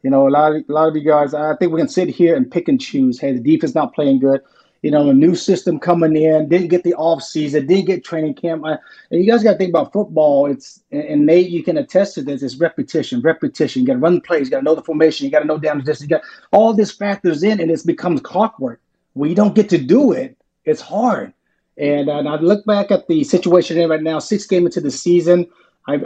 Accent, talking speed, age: American, 265 wpm, 30-49